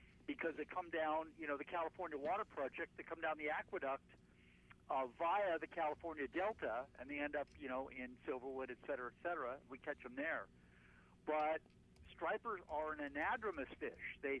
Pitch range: 135-190 Hz